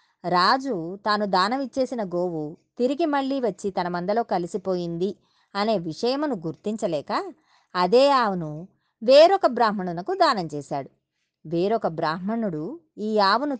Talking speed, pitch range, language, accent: 100 wpm, 175-235 Hz, Telugu, native